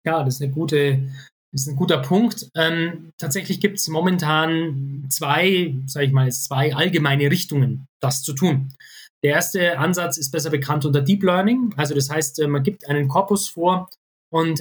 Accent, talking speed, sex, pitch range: German, 165 wpm, male, 135-165 Hz